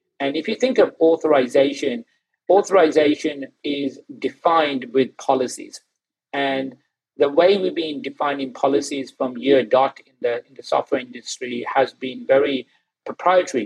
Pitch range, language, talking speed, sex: 130-150 Hz, English, 135 wpm, male